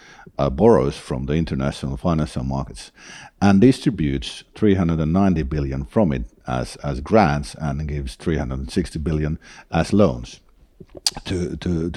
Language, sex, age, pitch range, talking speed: Finnish, male, 50-69, 75-100 Hz, 120 wpm